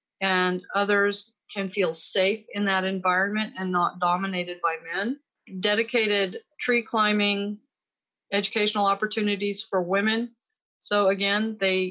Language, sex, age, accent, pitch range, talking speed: English, female, 30-49, American, 195-230 Hz, 115 wpm